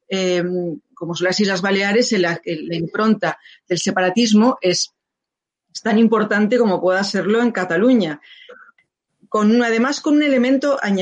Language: Spanish